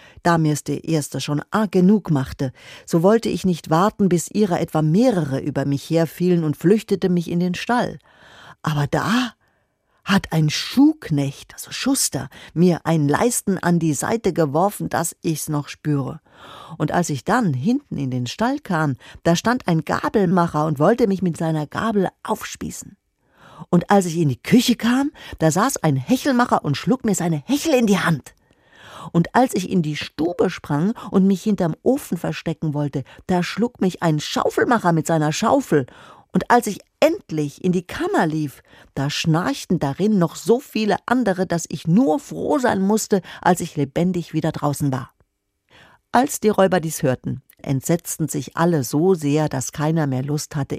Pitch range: 150-205 Hz